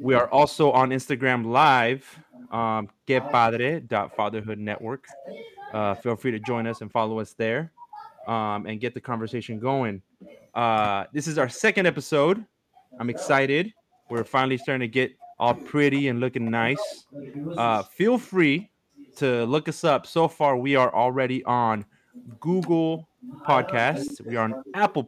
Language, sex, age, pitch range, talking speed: English, male, 20-39, 105-140 Hz, 150 wpm